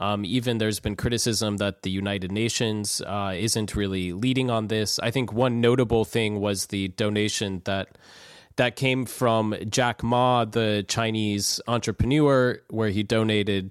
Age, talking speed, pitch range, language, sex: 20-39, 155 wpm, 100-115 Hz, English, male